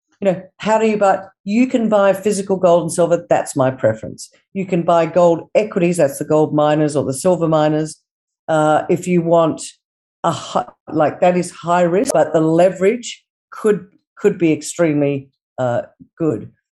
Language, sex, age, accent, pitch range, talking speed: English, female, 50-69, Australian, 150-190 Hz, 175 wpm